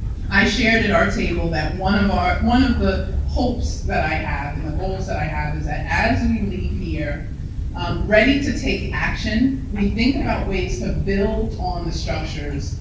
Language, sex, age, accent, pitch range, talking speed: English, female, 30-49, American, 80-100 Hz, 195 wpm